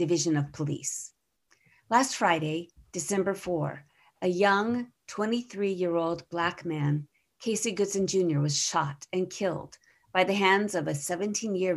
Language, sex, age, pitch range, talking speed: English, female, 50-69, 150-190 Hz, 125 wpm